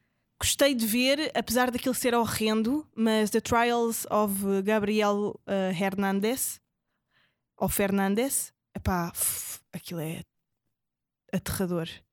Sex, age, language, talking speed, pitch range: female, 20-39, Portuguese, 95 wpm, 195-235 Hz